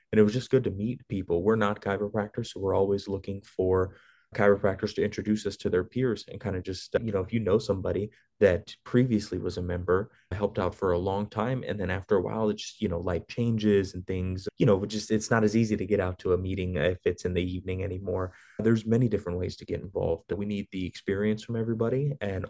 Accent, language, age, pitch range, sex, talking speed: American, English, 20-39, 95-110 Hz, male, 245 wpm